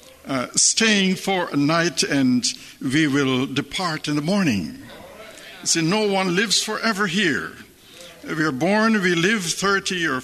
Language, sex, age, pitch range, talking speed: English, male, 60-79, 155-205 Hz, 145 wpm